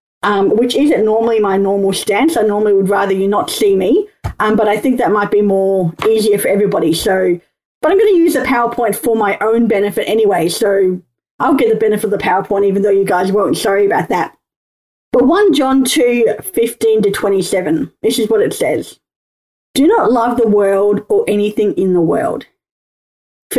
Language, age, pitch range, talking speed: English, 30-49, 195-255 Hz, 200 wpm